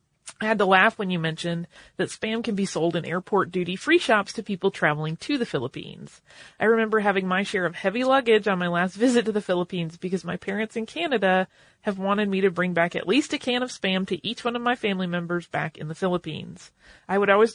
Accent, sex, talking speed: American, female, 235 wpm